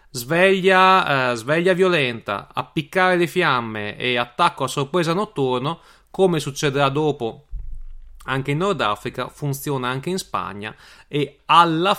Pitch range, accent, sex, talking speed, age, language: 110-145 Hz, native, male, 130 wpm, 30-49, Italian